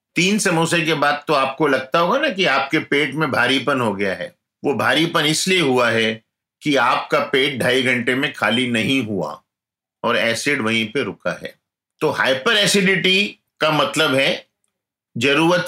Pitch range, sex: 125-170 Hz, male